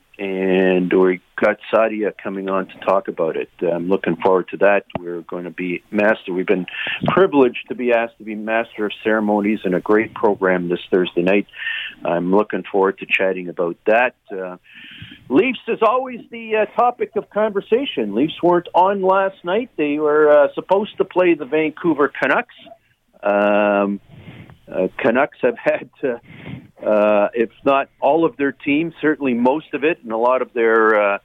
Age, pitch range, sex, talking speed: 50-69, 100-150 Hz, male, 170 wpm